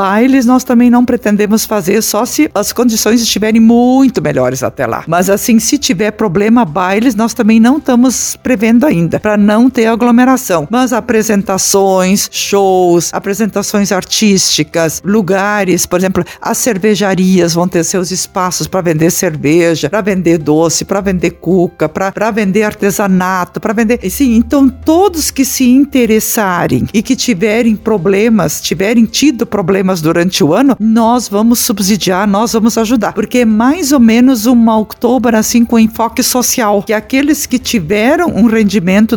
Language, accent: Portuguese, Brazilian